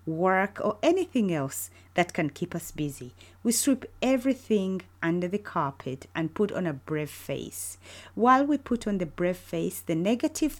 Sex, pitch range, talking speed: female, 135-210 Hz, 170 wpm